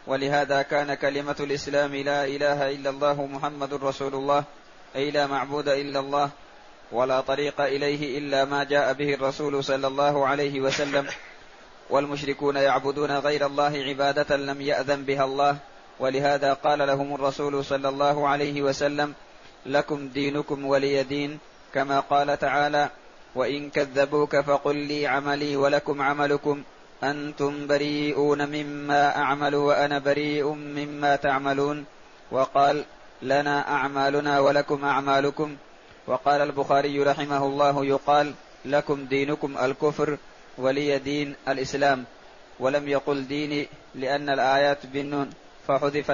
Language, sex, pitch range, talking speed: Arabic, male, 140-145 Hz, 115 wpm